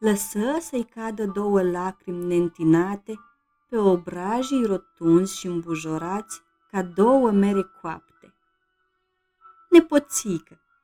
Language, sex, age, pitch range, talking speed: Romanian, female, 30-49, 180-240 Hz, 90 wpm